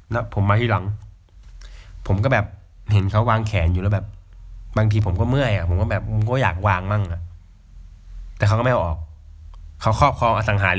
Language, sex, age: Thai, male, 20-39